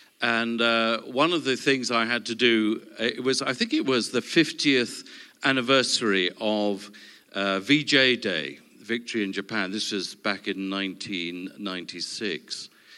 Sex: male